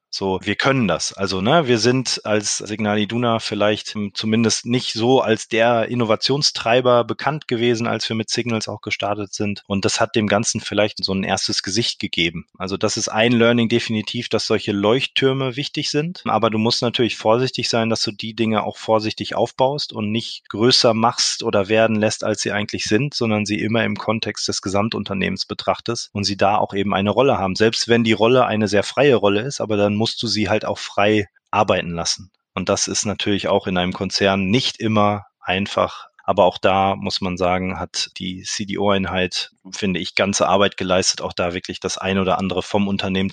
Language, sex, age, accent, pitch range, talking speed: German, male, 20-39, German, 100-115 Hz, 195 wpm